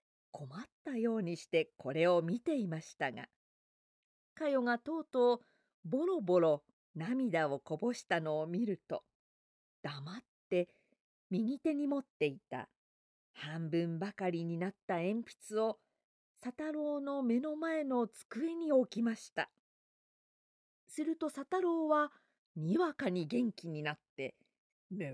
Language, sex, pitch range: Japanese, female, 175-290 Hz